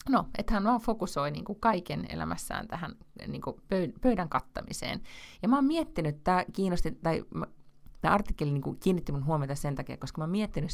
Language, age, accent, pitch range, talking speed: Finnish, 30-49, native, 130-165 Hz, 145 wpm